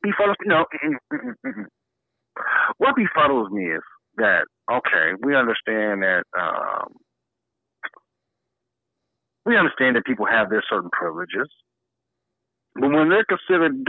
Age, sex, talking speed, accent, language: 50-69, male, 105 wpm, American, English